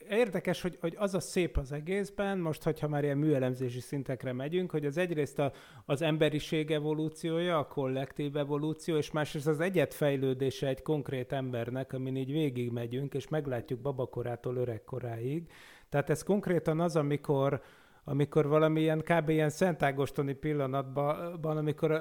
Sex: male